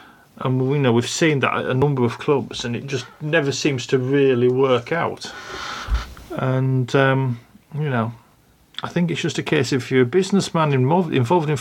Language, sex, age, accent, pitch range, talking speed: English, male, 40-59, British, 125-150 Hz, 185 wpm